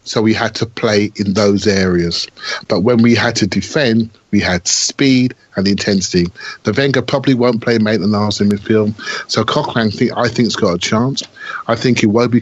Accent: British